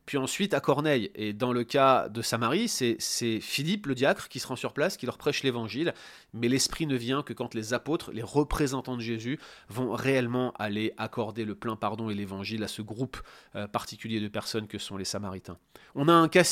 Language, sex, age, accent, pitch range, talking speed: French, male, 30-49, French, 115-140 Hz, 215 wpm